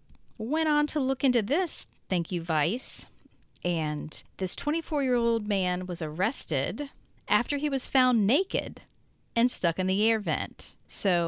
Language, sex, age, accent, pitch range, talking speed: English, female, 40-59, American, 175-245 Hz, 145 wpm